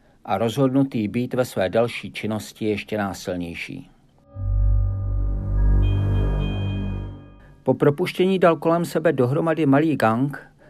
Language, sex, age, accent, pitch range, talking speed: Czech, male, 50-69, native, 115-145 Hz, 95 wpm